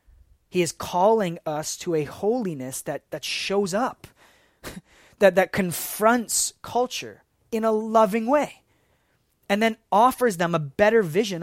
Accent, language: American, English